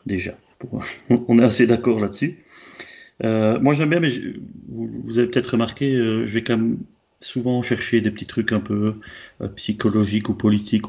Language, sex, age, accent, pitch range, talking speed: French, male, 30-49, French, 100-120 Hz, 170 wpm